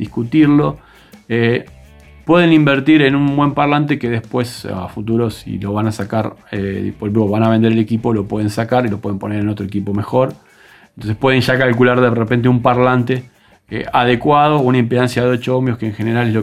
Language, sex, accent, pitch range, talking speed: Spanish, male, Argentinian, 110-130 Hz, 195 wpm